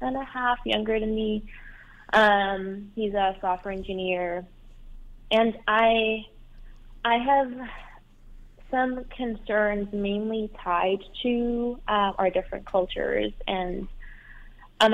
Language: English